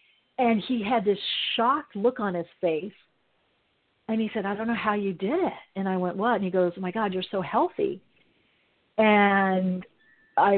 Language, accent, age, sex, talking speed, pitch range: English, American, 40-59, female, 195 wpm, 190-235 Hz